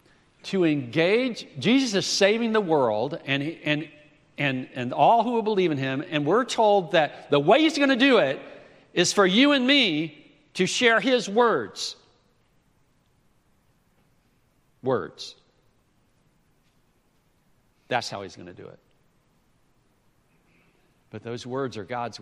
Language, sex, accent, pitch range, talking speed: English, male, American, 115-180 Hz, 135 wpm